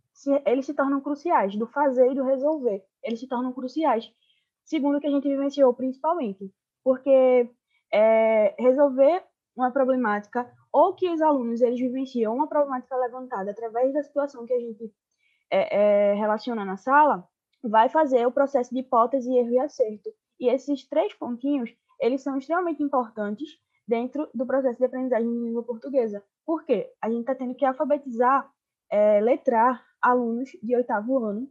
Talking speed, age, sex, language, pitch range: 160 wpm, 10-29, female, Portuguese, 235-290 Hz